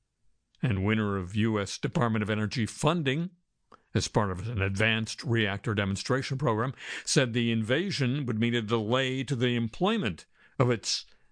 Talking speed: 150 wpm